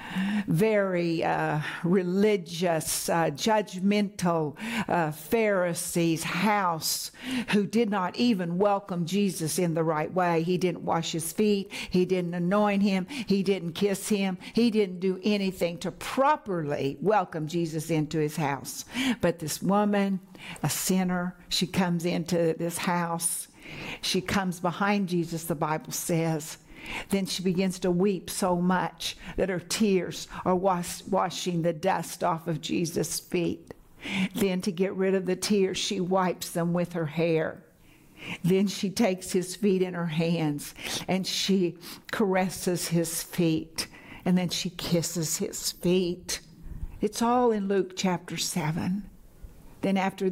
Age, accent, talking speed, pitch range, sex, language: 60-79, American, 140 wpm, 170-195 Hz, female, English